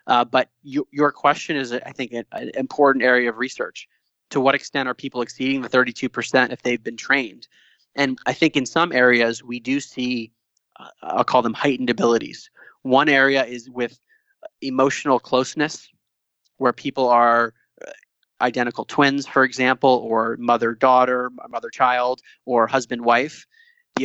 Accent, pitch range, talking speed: American, 120-135 Hz, 145 wpm